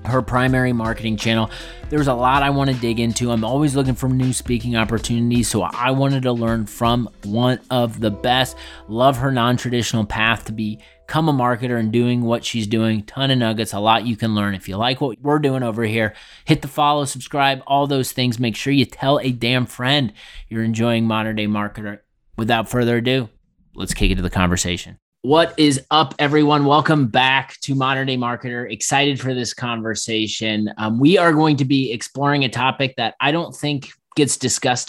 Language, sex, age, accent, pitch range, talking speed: English, male, 30-49, American, 115-135 Hz, 200 wpm